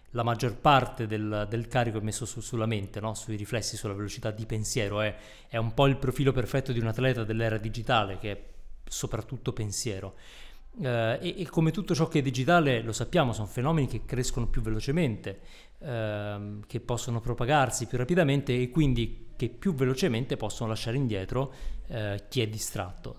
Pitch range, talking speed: 110-135 Hz, 175 wpm